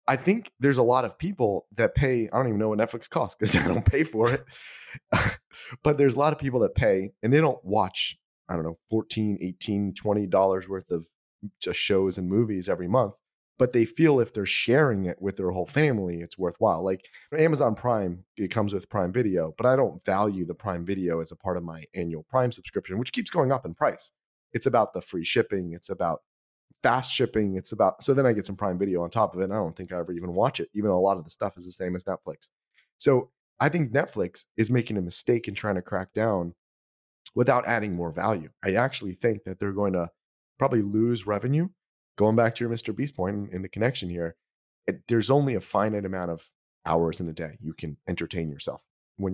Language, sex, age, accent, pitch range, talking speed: English, male, 30-49, American, 90-115 Hz, 225 wpm